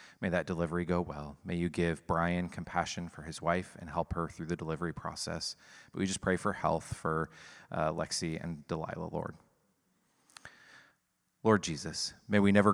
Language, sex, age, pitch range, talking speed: English, male, 30-49, 85-95 Hz, 175 wpm